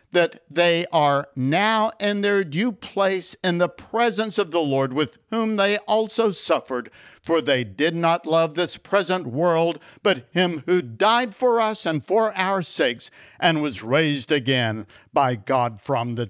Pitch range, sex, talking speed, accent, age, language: 140-195 Hz, male, 165 wpm, American, 60-79, English